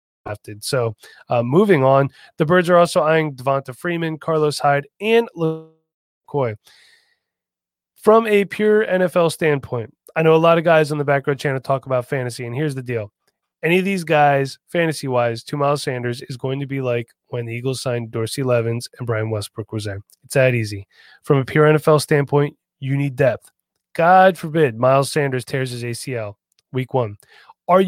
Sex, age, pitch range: male, 30-49, 130-170 Hz